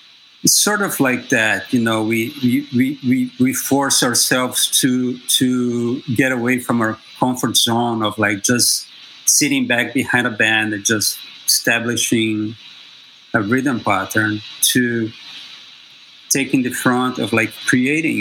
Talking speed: 140 wpm